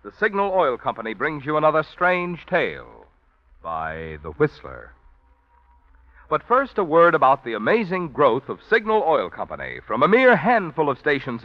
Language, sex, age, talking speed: English, male, 60-79, 155 wpm